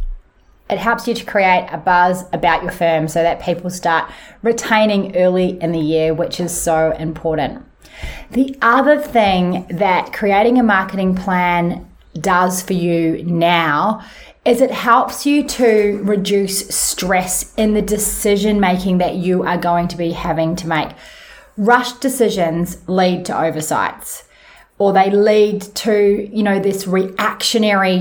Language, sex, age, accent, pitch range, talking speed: English, female, 30-49, Australian, 180-215 Hz, 145 wpm